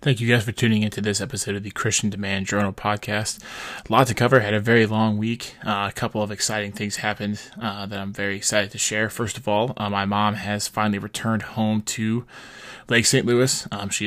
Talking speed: 225 wpm